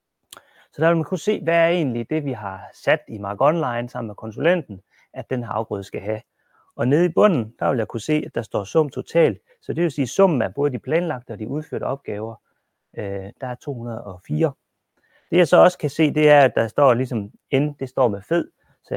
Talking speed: 235 wpm